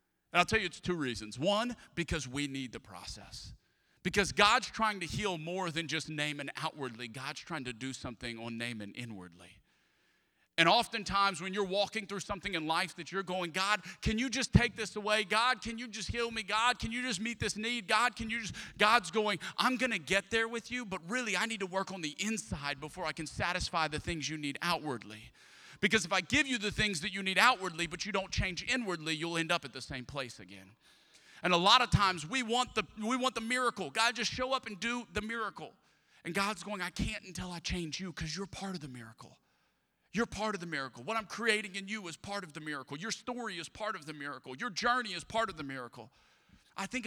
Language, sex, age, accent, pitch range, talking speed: English, male, 40-59, American, 160-220 Hz, 235 wpm